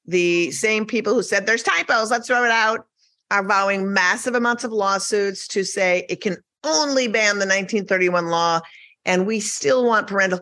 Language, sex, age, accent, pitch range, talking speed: English, female, 40-59, American, 190-250 Hz, 180 wpm